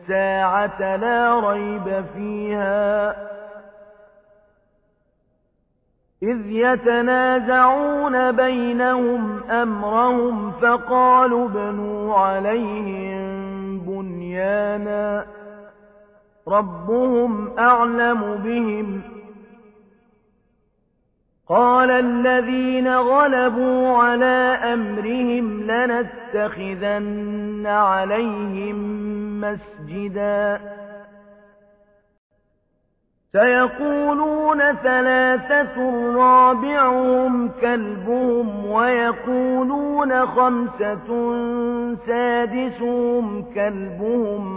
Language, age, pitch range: Arabic, 40-59, 205-245 Hz